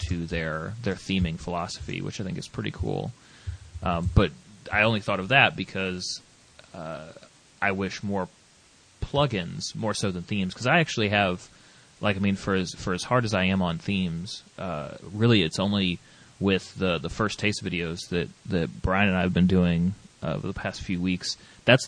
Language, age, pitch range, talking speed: English, 30-49, 90-105 Hz, 190 wpm